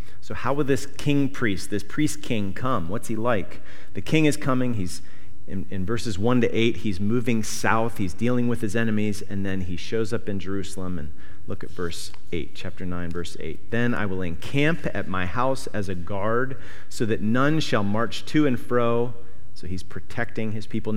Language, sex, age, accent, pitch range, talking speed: English, male, 40-59, American, 95-125 Hz, 195 wpm